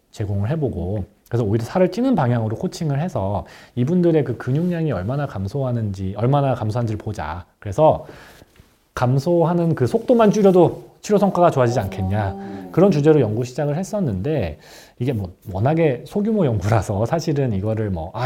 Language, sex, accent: Korean, male, native